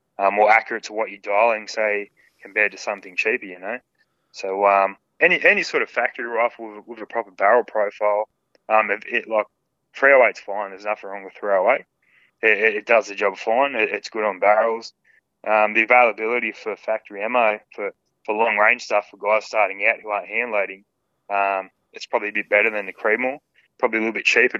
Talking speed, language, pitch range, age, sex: 200 wpm, English, 100-115 Hz, 20-39, male